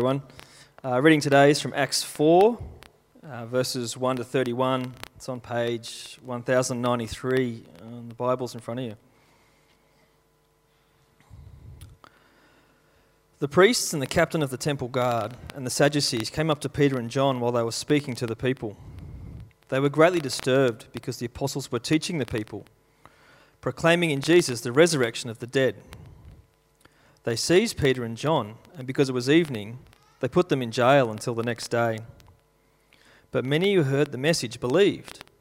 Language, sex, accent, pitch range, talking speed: English, male, Australian, 120-145 Hz, 160 wpm